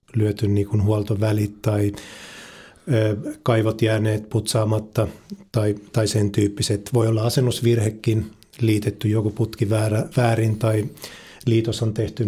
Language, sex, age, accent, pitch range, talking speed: Finnish, male, 30-49, native, 105-115 Hz, 115 wpm